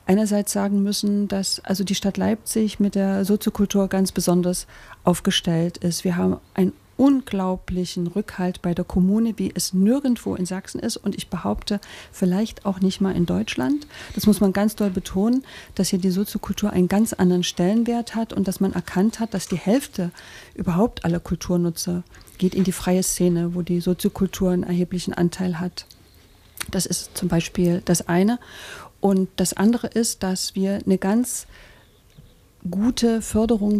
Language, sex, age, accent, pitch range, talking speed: German, female, 40-59, German, 180-210 Hz, 165 wpm